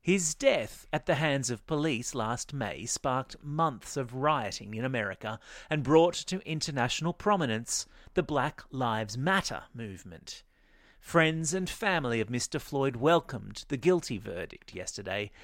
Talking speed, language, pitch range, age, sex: 140 wpm, English, 120-160 Hz, 40-59, male